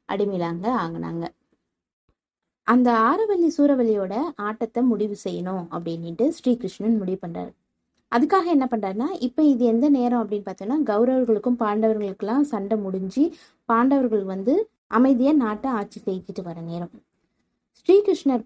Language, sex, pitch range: Tamil, female, 190-245 Hz